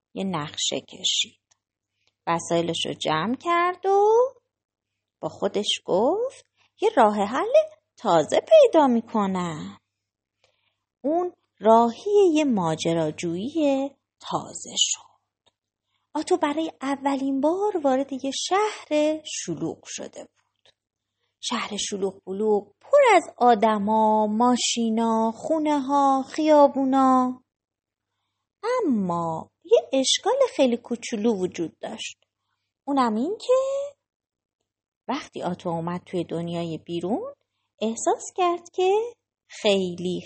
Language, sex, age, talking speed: Persian, female, 30-49, 95 wpm